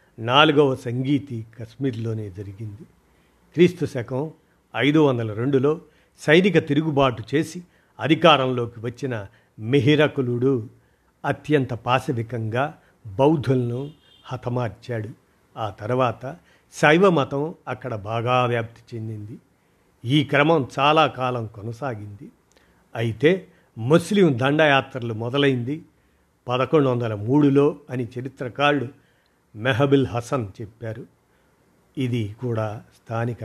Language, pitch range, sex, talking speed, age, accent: Telugu, 115-150 Hz, male, 80 wpm, 50-69, native